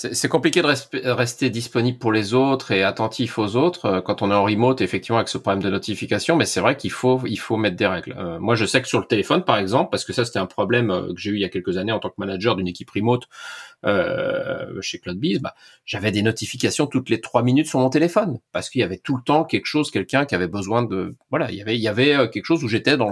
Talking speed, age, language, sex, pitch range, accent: 280 wpm, 30-49, French, male, 100-130 Hz, French